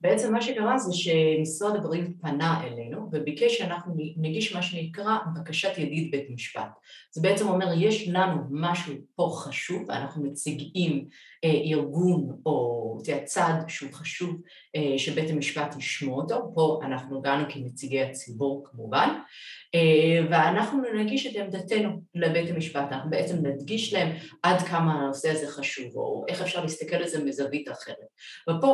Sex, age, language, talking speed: female, 30-49, Hebrew, 140 wpm